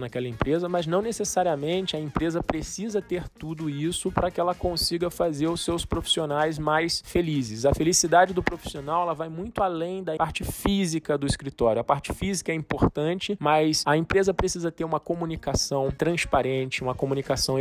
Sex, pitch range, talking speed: male, 140-170 Hz, 165 wpm